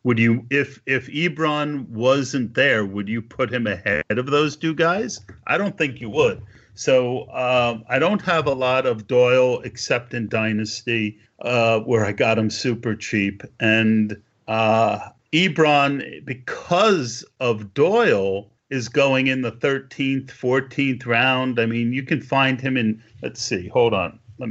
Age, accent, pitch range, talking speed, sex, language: 50-69, American, 110-135 Hz, 160 wpm, male, English